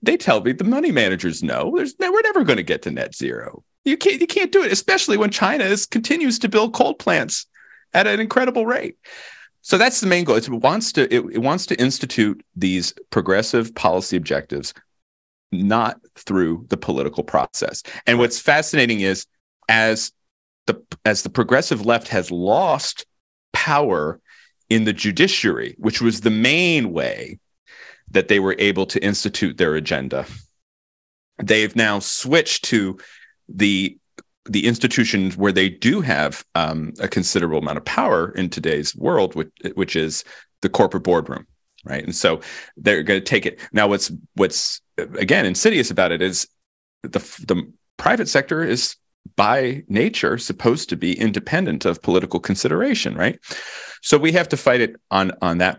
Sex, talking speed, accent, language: male, 160 wpm, American, English